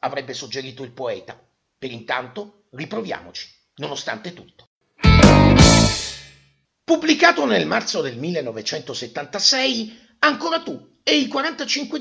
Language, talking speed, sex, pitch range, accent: Italian, 95 wpm, male, 170-280 Hz, native